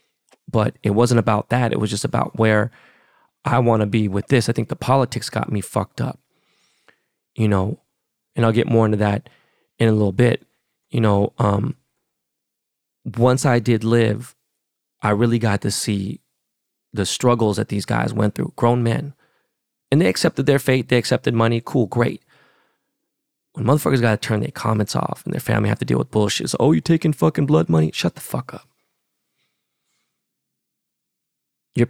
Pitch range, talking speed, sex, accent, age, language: 105-130 Hz, 175 wpm, male, American, 20-39, English